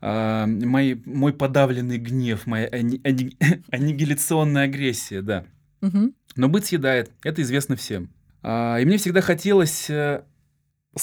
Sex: male